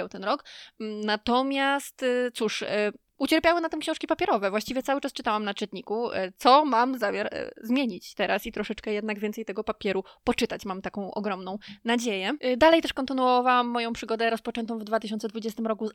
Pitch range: 215-255 Hz